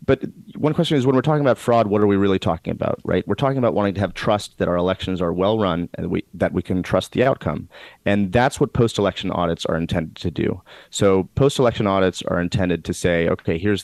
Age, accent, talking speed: 30-49, American, 235 wpm